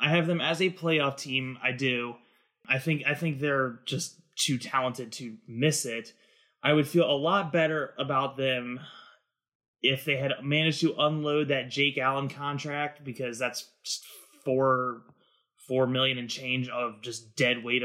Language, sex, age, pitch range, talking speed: English, male, 20-39, 125-155 Hz, 165 wpm